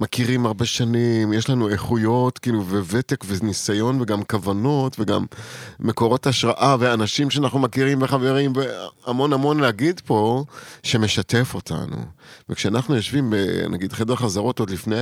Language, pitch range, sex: Hebrew, 105-130 Hz, male